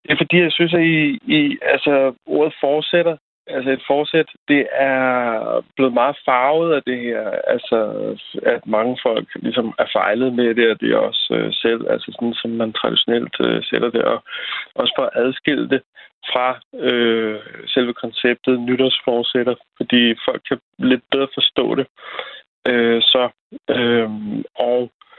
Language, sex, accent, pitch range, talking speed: Danish, male, native, 120-145 Hz, 160 wpm